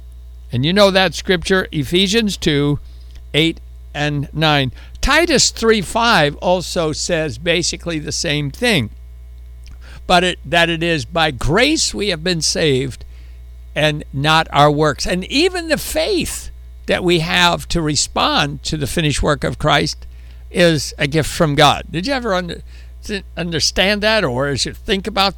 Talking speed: 150 wpm